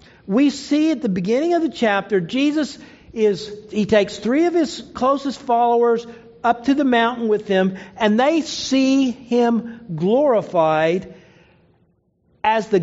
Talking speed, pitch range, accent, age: 140 wpm, 195-260 Hz, American, 50-69